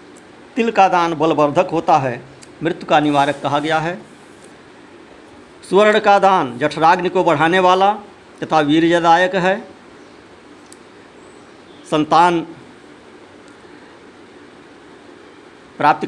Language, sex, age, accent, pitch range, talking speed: Hindi, male, 50-69, native, 160-195 Hz, 90 wpm